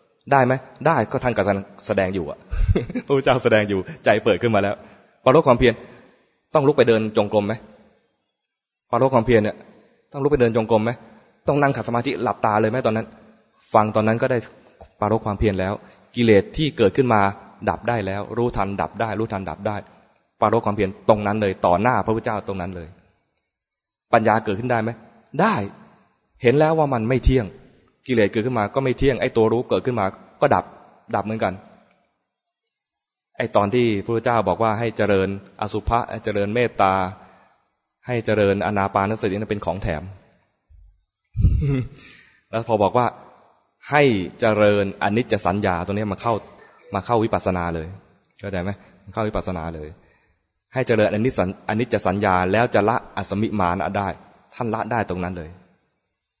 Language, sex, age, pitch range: English, male, 20-39, 100-120 Hz